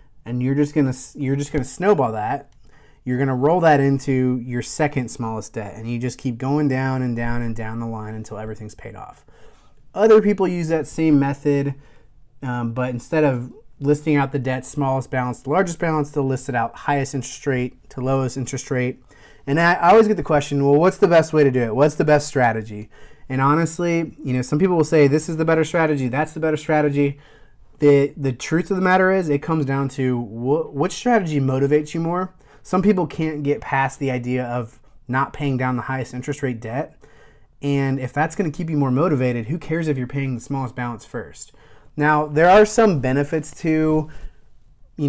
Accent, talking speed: American, 210 wpm